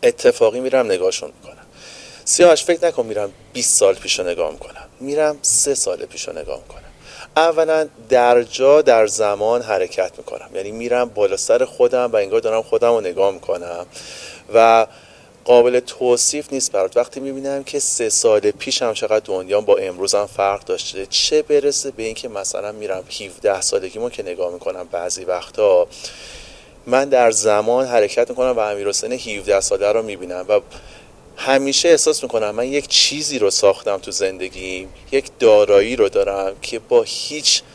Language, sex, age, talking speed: Persian, male, 30-49, 160 wpm